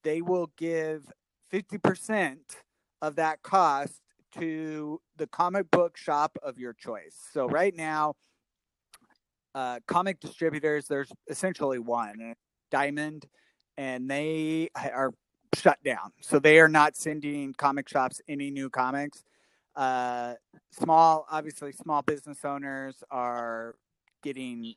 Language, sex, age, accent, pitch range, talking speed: English, male, 30-49, American, 135-165 Hz, 115 wpm